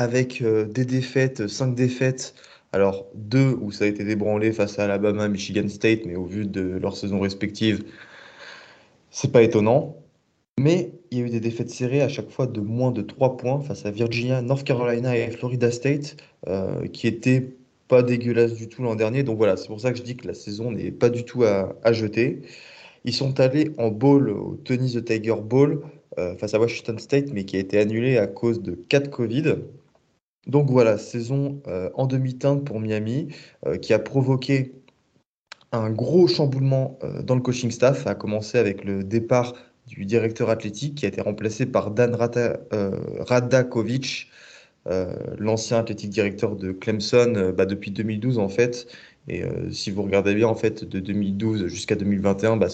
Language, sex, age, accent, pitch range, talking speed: French, male, 20-39, French, 105-130 Hz, 175 wpm